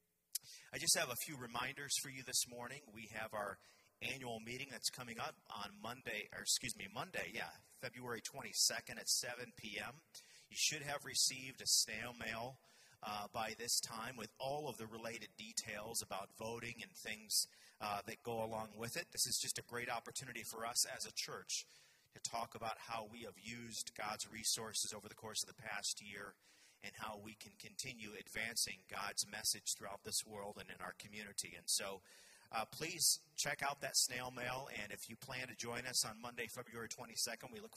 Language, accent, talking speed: English, American, 190 wpm